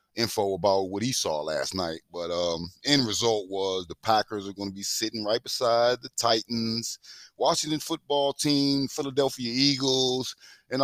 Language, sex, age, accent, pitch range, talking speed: English, male, 30-49, American, 105-135 Hz, 160 wpm